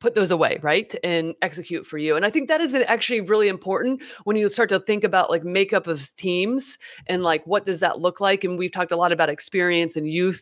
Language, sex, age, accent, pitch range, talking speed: English, female, 30-49, American, 175-220 Hz, 240 wpm